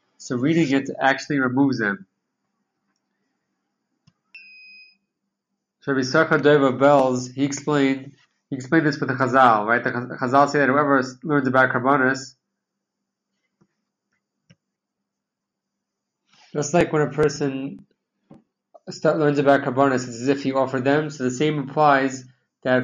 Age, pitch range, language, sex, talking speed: 20-39, 120-140 Hz, English, male, 125 wpm